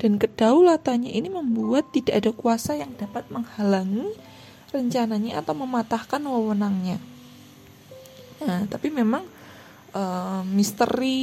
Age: 20-39